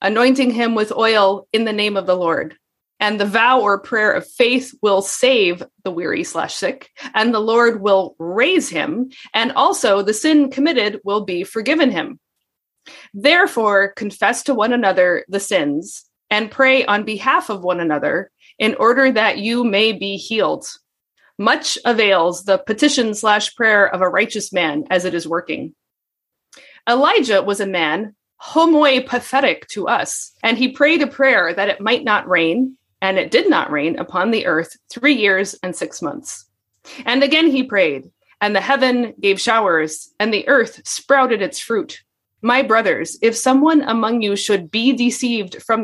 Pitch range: 200-270 Hz